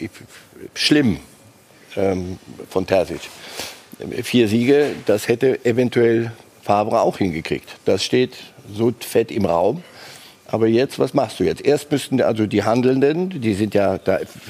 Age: 50-69